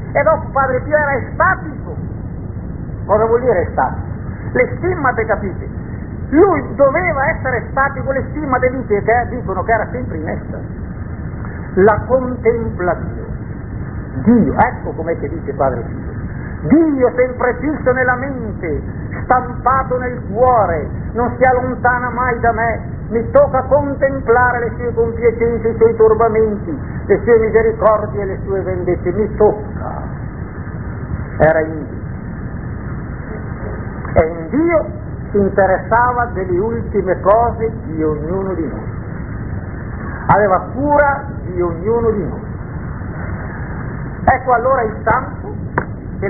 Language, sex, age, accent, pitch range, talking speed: Italian, male, 50-69, native, 190-275 Hz, 125 wpm